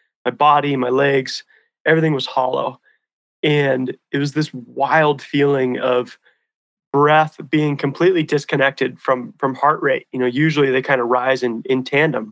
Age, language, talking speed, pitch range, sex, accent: 30-49, English, 155 wpm, 135-160 Hz, male, American